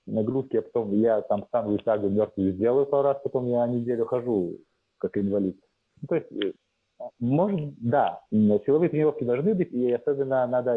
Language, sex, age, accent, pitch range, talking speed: Russian, male, 30-49, native, 105-140 Hz, 165 wpm